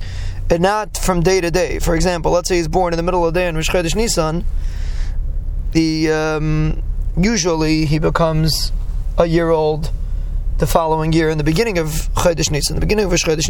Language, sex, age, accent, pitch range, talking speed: English, male, 20-39, American, 115-180 Hz, 185 wpm